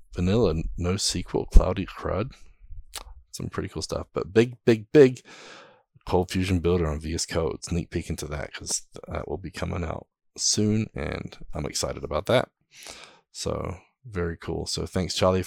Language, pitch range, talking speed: English, 80-100 Hz, 155 wpm